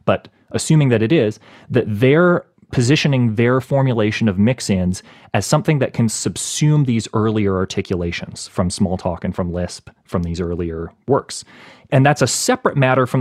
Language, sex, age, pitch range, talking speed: English, male, 30-49, 100-125 Hz, 165 wpm